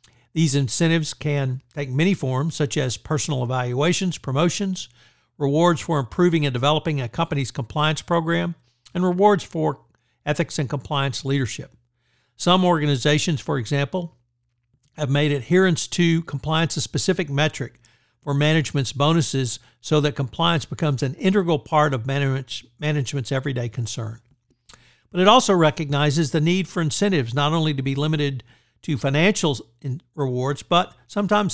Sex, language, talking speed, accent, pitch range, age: male, English, 135 wpm, American, 130-165 Hz, 60-79